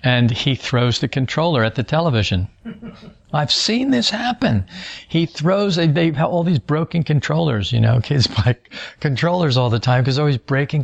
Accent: American